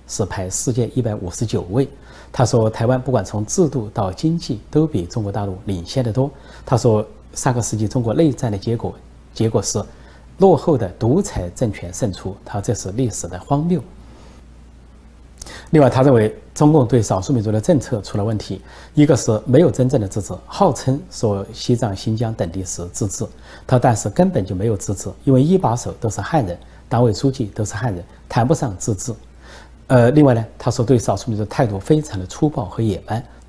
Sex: male